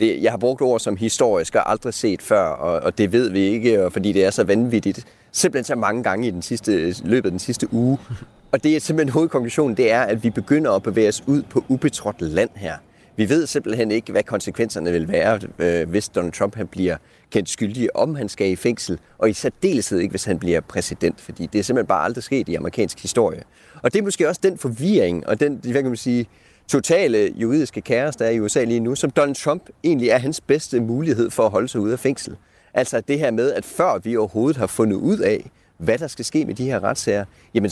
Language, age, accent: Danish, 30-49, native